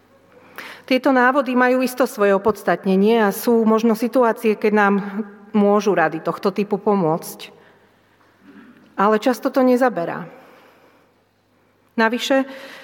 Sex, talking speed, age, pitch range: female, 105 wpm, 40-59, 190-225 Hz